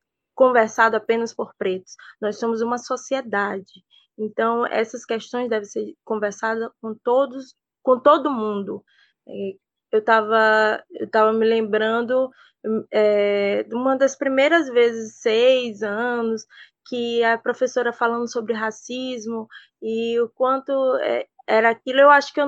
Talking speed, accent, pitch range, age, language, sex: 130 wpm, Brazilian, 235-300 Hz, 20-39, Portuguese, female